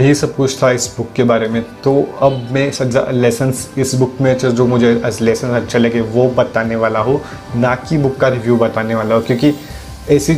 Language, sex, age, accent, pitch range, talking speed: English, male, 30-49, Indian, 110-130 Hz, 195 wpm